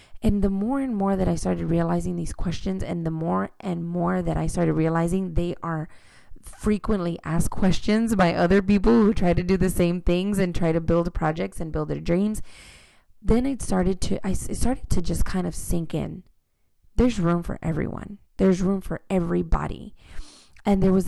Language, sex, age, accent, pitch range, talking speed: English, female, 20-39, American, 160-205 Hz, 195 wpm